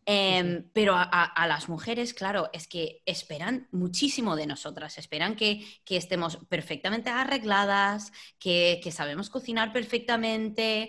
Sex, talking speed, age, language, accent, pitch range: female, 140 wpm, 20-39, English, Spanish, 165-215 Hz